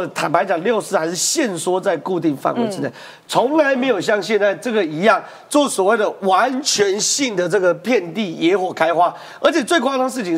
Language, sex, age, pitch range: Chinese, male, 40-59, 180-260 Hz